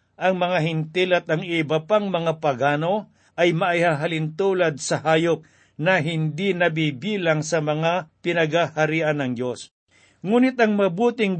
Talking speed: 130 wpm